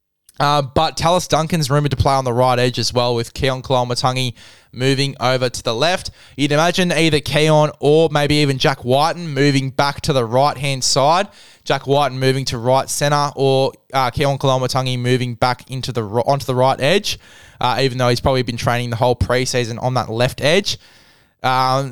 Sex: male